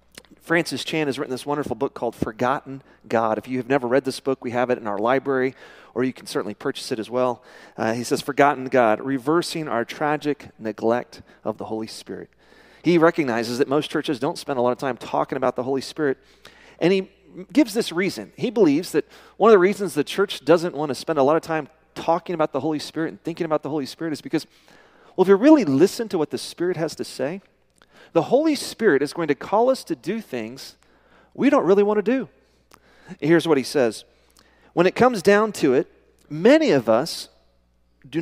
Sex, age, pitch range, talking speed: male, 40-59, 125-185 Hz, 215 wpm